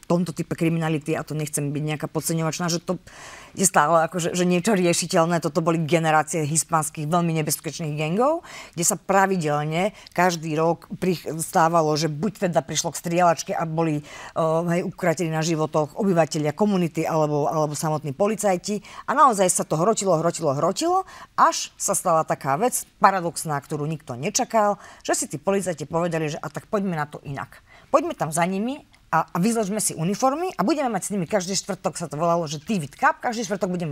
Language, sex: Slovak, female